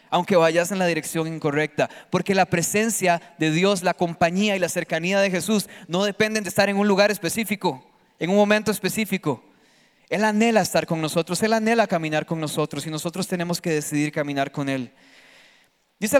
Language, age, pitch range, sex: Spanish, 20-39, 150-195 Hz, male